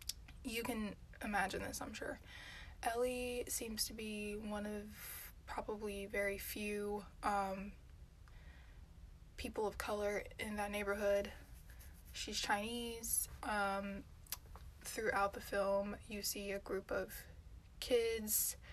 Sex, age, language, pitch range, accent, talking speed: female, 20-39, English, 195-225 Hz, American, 110 wpm